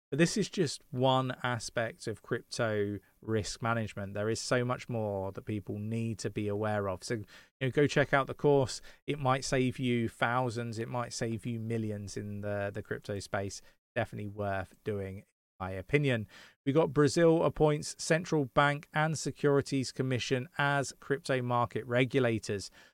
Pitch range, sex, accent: 115-130 Hz, male, British